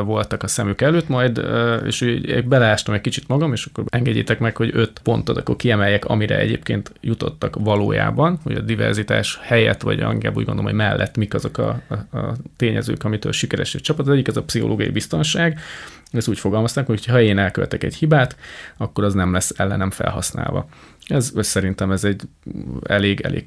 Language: Hungarian